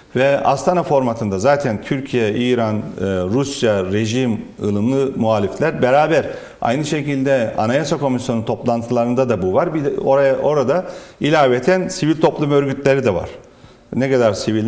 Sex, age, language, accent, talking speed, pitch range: male, 40-59, Turkish, native, 125 wpm, 115-160 Hz